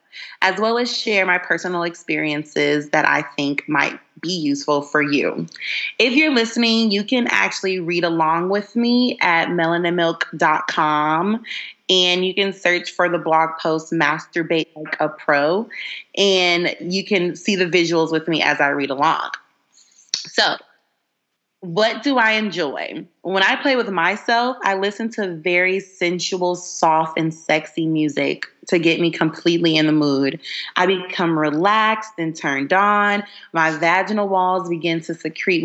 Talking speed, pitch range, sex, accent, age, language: 150 wpm, 160-200 Hz, female, American, 30-49, English